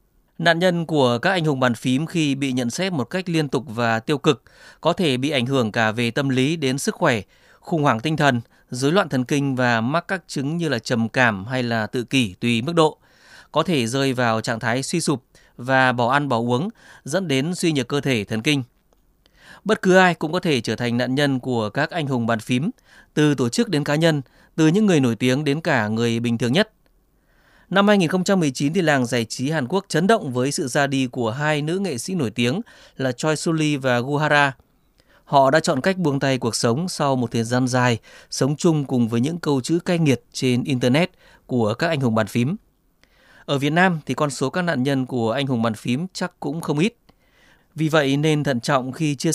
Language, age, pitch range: Vietnamese, 20-39, 125-160 Hz